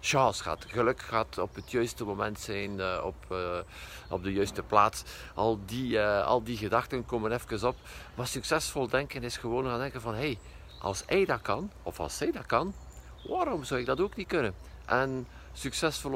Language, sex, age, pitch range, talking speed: Dutch, male, 50-69, 110-130 Hz, 195 wpm